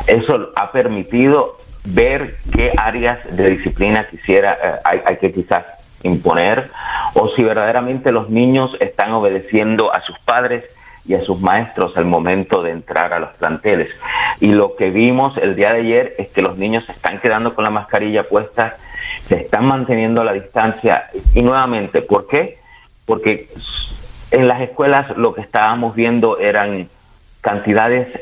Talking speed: 160 wpm